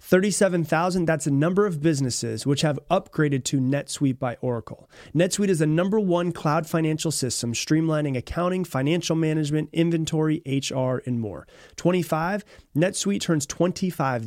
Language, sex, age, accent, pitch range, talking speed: English, male, 30-49, American, 130-170 Hz, 140 wpm